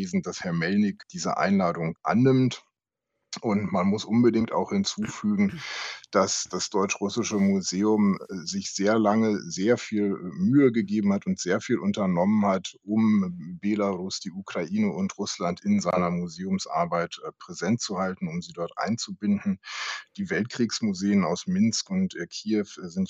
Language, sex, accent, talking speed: German, male, German, 135 wpm